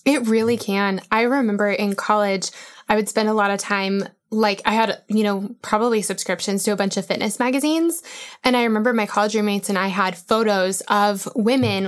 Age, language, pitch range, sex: 10-29, English, 200-235 Hz, female